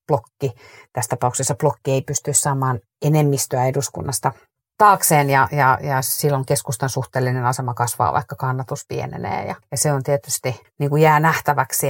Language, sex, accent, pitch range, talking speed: Finnish, female, native, 130-150 Hz, 140 wpm